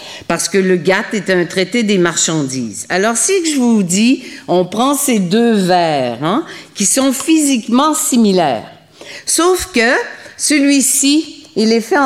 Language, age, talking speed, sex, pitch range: French, 50-69, 150 wpm, female, 180-255 Hz